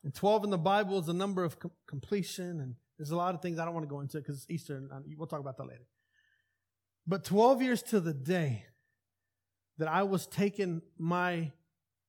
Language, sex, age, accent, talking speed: English, male, 30-49, American, 215 wpm